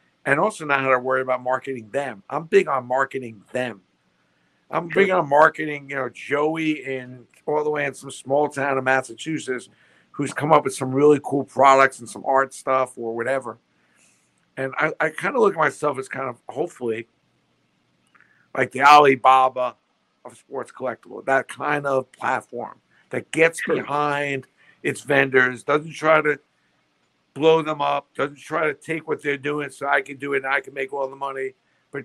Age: 50-69